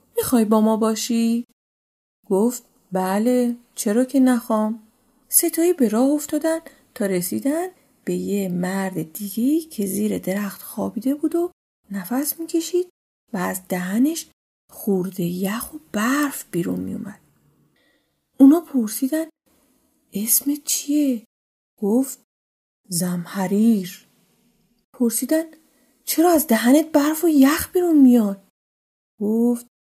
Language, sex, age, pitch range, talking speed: Persian, female, 30-49, 205-275 Hz, 105 wpm